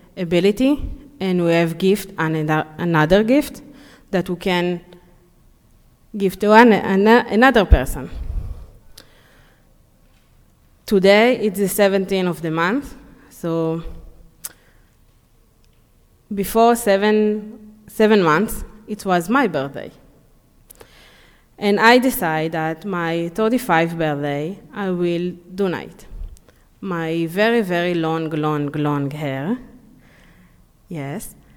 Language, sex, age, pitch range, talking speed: English, female, 20-39, 165-200 Hz, 105 wpm